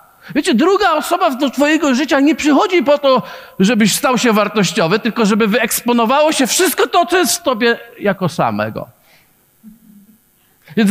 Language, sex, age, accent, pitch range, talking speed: Polish, male, 50-69, native, 145-235 Hz, 150 wpm